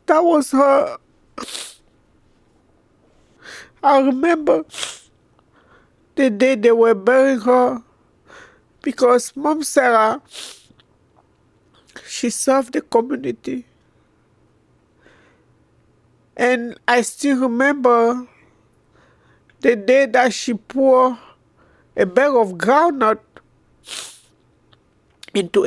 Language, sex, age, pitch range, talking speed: English, male, 50-69, 220-275 Hz, 75 wpm